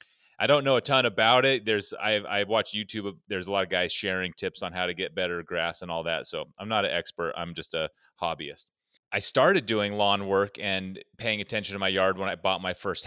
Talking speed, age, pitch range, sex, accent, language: 245 wpm, 30-49, 95-120 Hz, male, American, English